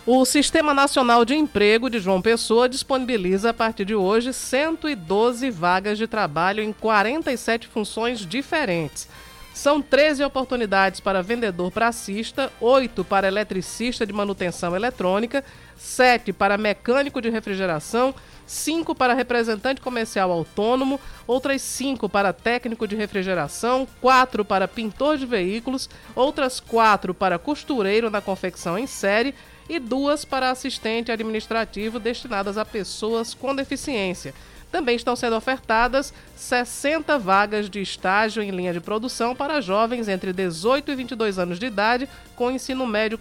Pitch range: 205-260 Hz